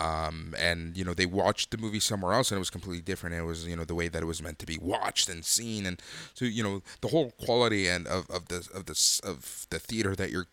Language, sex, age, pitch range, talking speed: English, male, 20-39, 90-120 Hz, 275 wpm